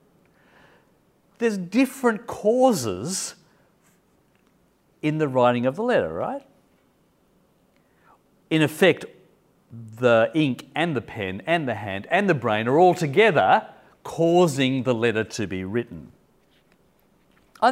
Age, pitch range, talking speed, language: 50-69, 125-180 Hz, 110 wpm, English